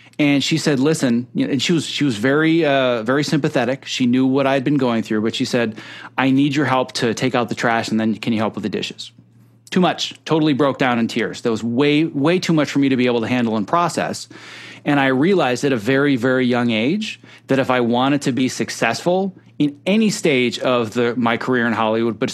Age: 30-49